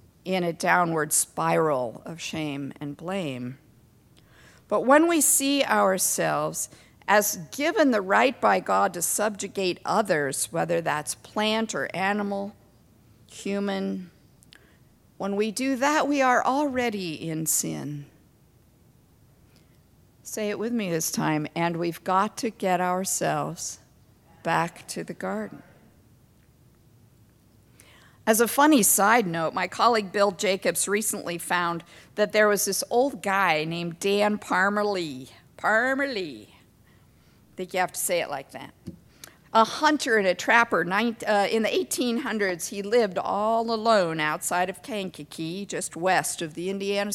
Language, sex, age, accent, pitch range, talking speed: English, female, 50-69, American, 160-225 Hz, 130 wpm